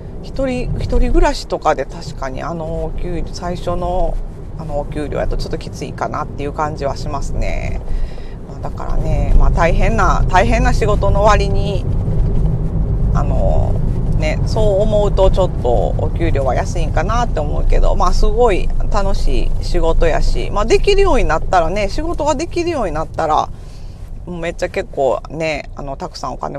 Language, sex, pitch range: Japanese, female, 155-200 Hz